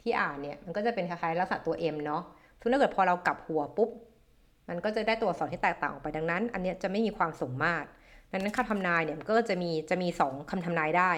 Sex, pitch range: female, 170-225 Hz